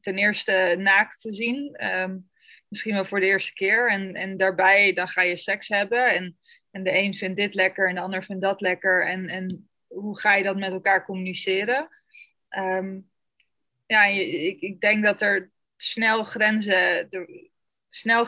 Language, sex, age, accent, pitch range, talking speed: Dutch, female, 20-39, Dutch, 190-220 Hz, 160 wpm